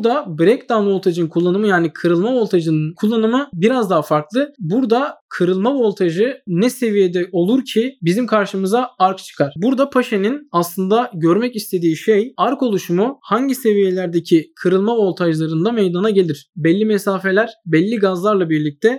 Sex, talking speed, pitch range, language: male, 130 wpm, 175-225 Hz, Turkish